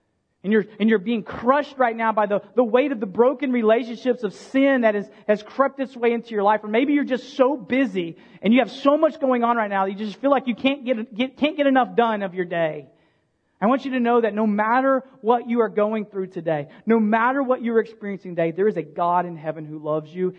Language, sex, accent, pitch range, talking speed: English, male, American, 155-225 Hz, 255 wpm